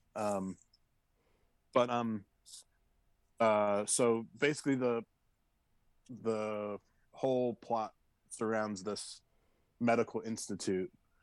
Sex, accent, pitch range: male, American, 95-115 Hz